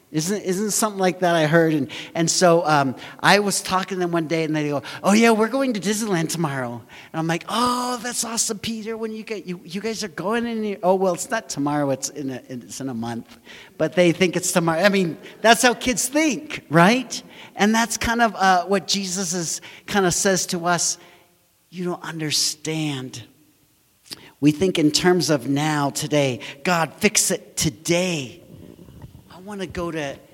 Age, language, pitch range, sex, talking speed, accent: 50-69, English, 145-205 Hz, male, 200 wpm, American